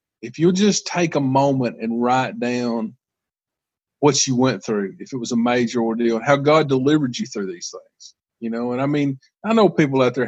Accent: American